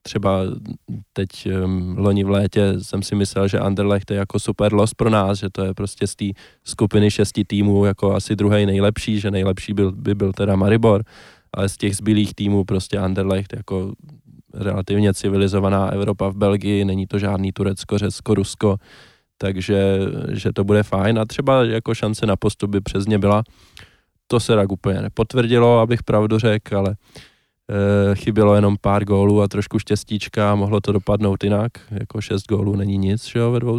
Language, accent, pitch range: Czech, native, 100-115 Hz